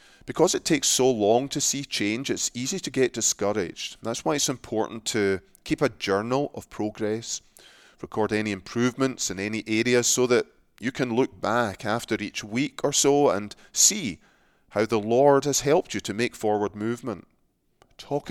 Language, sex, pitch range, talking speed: English, male, 100-120 Hz, 175 wpm